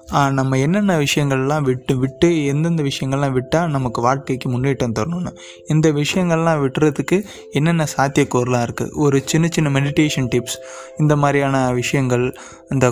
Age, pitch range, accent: 20-39, 120-145 Hz, native